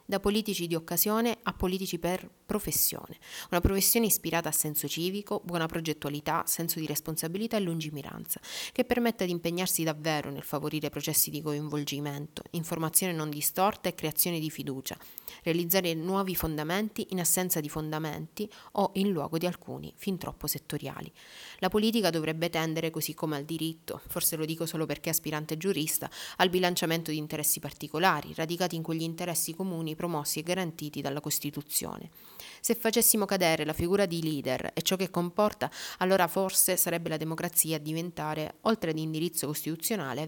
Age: 30-49